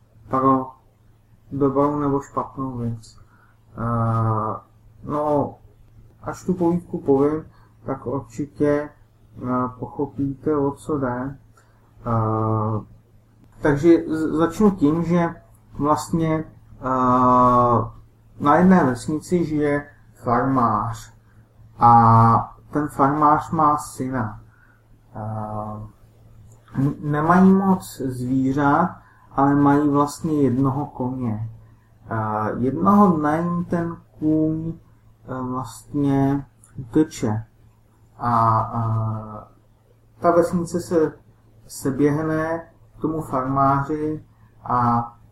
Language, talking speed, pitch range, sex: Czech, 75 wpm, 110-150 Hz, male